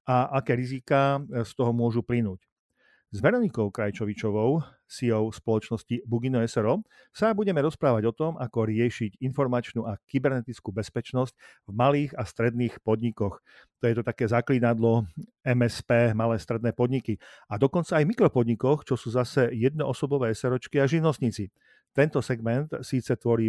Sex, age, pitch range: male, 50-69, 115-135 Hz